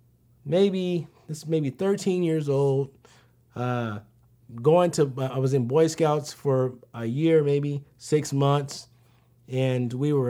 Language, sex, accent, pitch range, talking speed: English, male, American, 120-150 Hz, 140 wpm